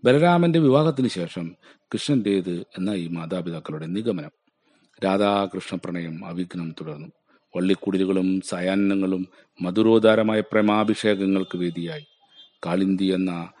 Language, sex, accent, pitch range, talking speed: Malayalam, male, native, 80-100 Hz, 80 wpm